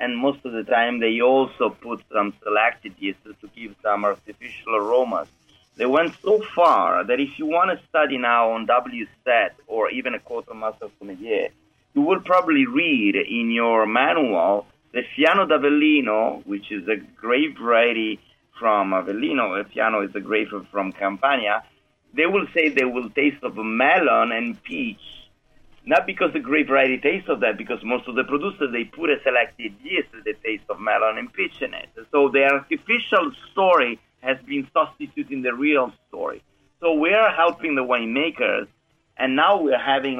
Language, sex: English, male